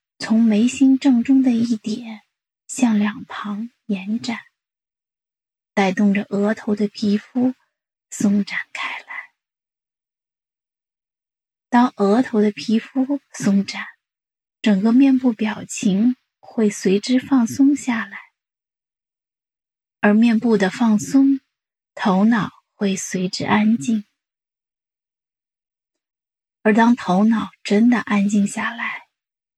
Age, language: 20-39, English